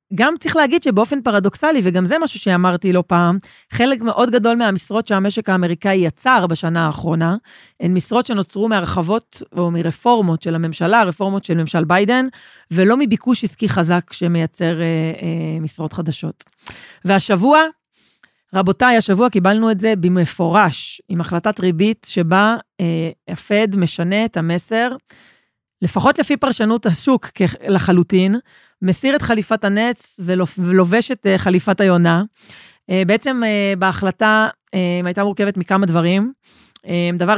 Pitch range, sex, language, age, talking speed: 175-220 Hz, female, Hebrew, 30-49, 125 wpm